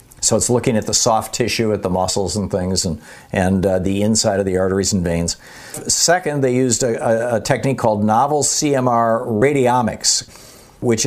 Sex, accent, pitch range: male, American, 105-135 Hz